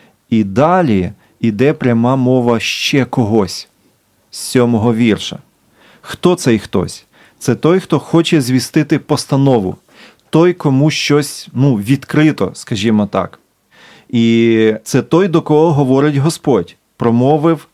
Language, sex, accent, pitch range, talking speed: Ukrainian, male, native, 110-145 Hz, 115 wpm